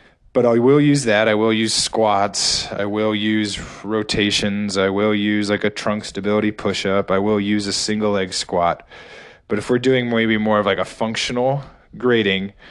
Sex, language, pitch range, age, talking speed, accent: male, English, 100-115 Hz, 20-39, 190 wpm, American